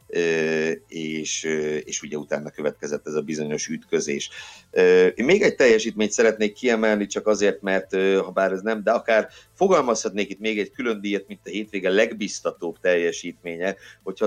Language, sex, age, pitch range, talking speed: Hungarian, male, 50-69, 80-110 Hz, 150 wpm